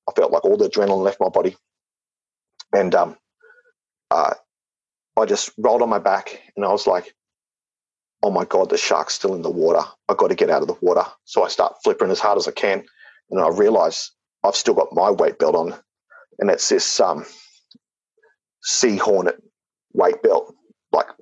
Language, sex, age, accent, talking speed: English, male, 40-59, Australian, 190 wpm